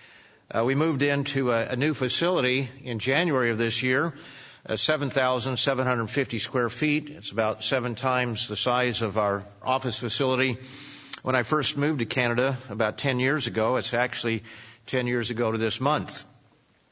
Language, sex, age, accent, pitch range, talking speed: English, male, 50-69, American, 115-135 Hz, 160 wpm